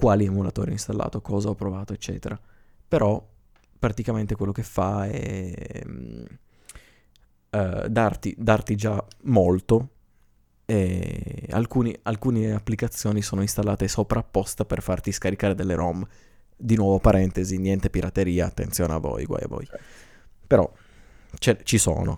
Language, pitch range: Italian, 95-110 Hz